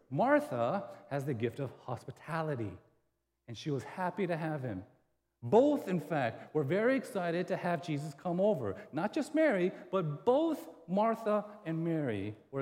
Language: English